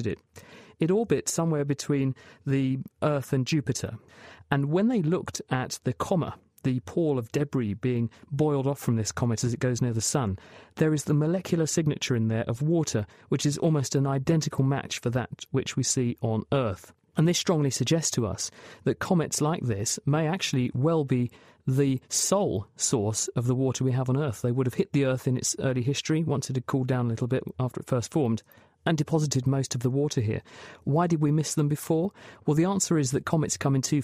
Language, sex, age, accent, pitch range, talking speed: English, male, 40-59, British, 120-150 Hz, 215 wpm